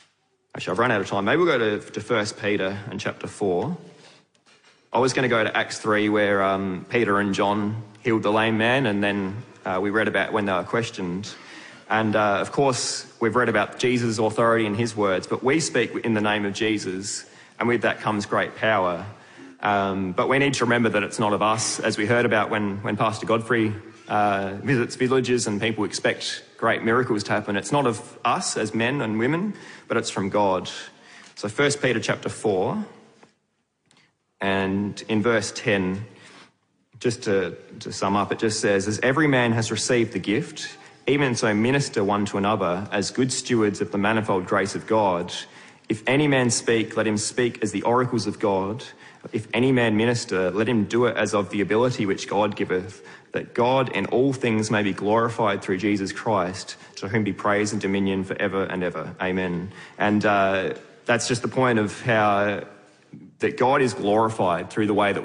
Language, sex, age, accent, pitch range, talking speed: English, male, 20-39, Australian, 100-120 Hz, 195 wpm